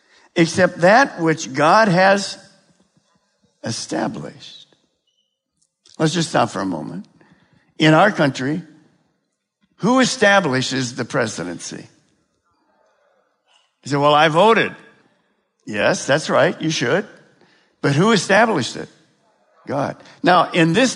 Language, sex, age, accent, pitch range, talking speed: English, male, 60-79, American, 140-190 Hz, 105 wpm